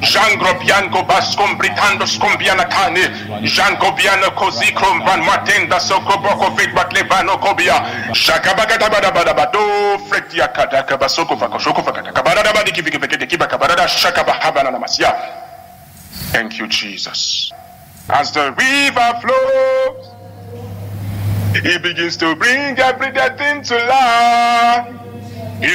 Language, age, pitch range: English, 60-79, 165-260 Hz